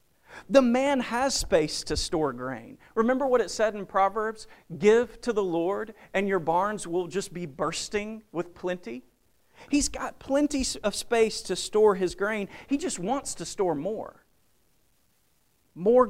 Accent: American